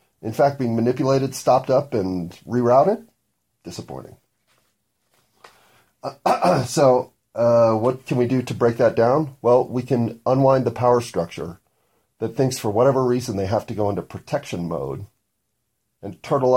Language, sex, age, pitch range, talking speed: English, male, 40-59, 110-135 Hz, 150 wpm